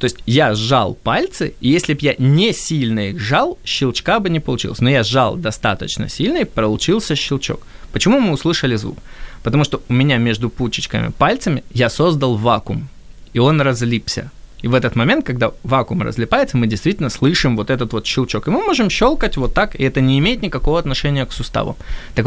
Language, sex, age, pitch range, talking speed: Ukrainian, male, 20-39, 115-155 Hz, 190 wpm